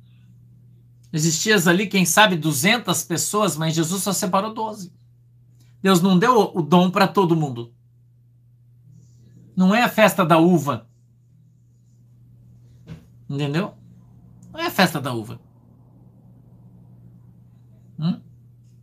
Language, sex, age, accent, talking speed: Portuguese, male, 50-69, Brazilian, 105 wpm